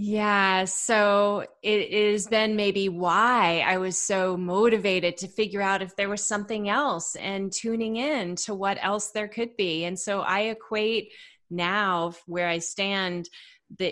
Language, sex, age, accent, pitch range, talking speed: English, female, 30-49, American, 180-220 Hz, 160 wpm